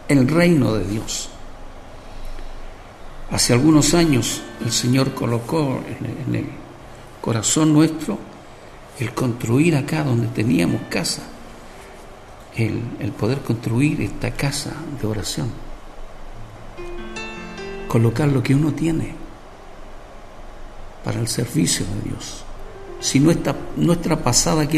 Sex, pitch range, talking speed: male, 110-150 Hz, 105 wpm